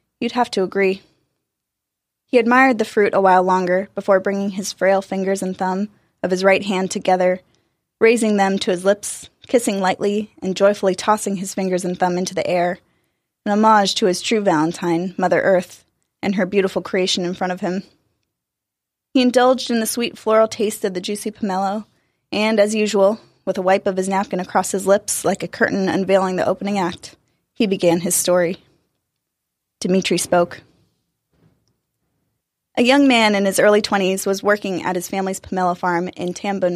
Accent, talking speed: American, 175 wpm